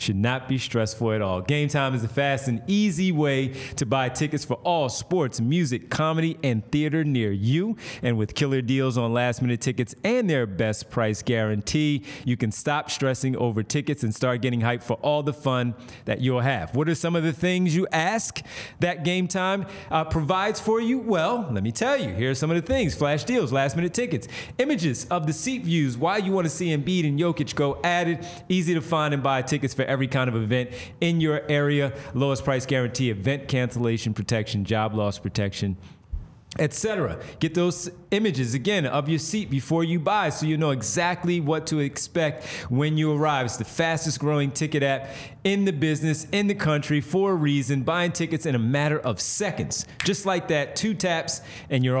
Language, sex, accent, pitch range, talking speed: English, male, American, 125-165 Hz, 200 wpm